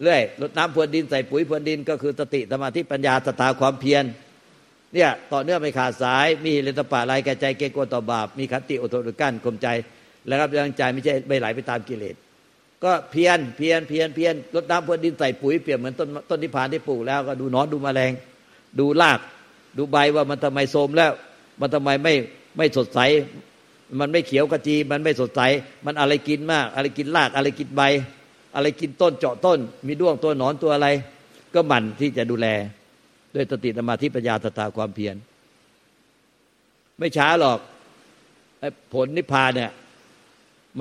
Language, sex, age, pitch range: Thai, male, 60-79, 125-150 Hz